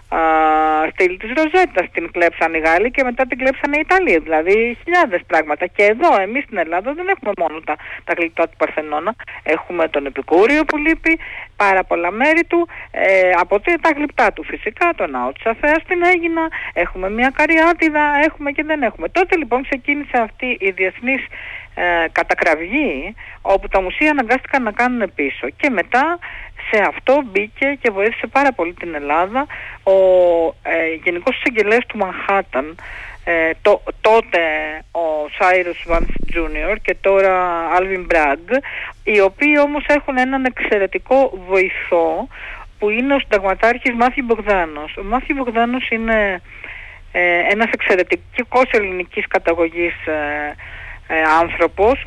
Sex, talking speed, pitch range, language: female, 135 wpm, 175-275 Hz, Greek